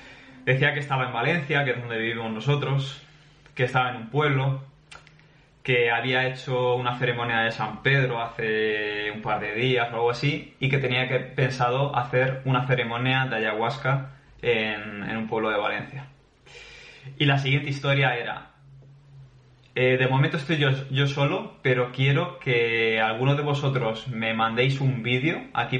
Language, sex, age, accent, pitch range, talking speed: Spanish, male, 20-39, Spanish, 120-140 Hz, 165 wpm